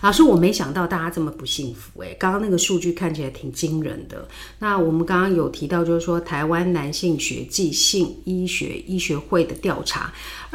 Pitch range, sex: 155-190 Hz, female